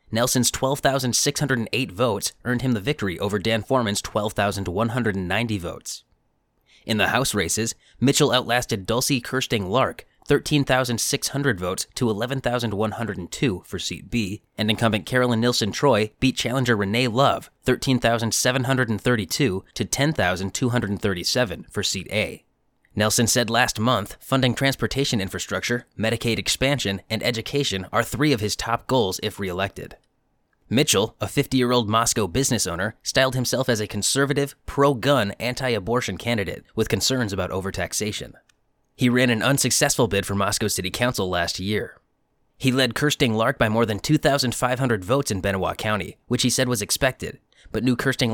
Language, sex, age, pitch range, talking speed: English, male, 20-39, 105-130 Hz, 135 wpm